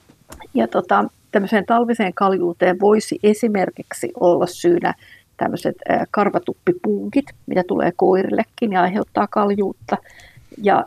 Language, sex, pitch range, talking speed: Finnish, female, 180-210 Hz, 95 wpm